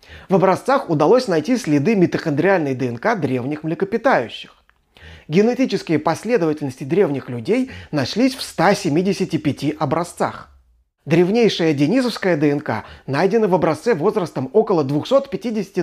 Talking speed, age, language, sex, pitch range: 100 wpm, 30-49, Russian, male, 150-220 Hz